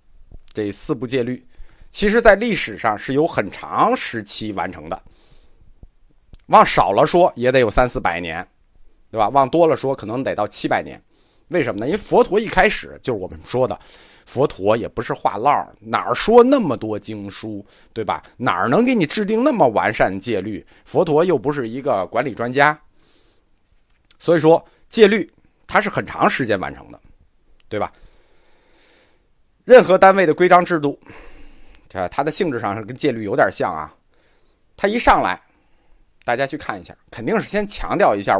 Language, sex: Chinese, male